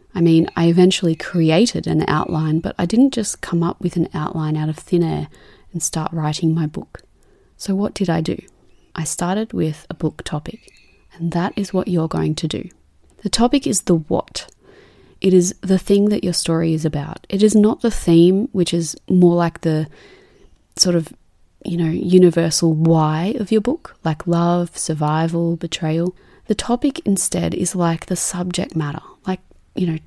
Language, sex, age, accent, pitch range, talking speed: English, female, 30-49, Australian, 160-195 Hz, 185 wpm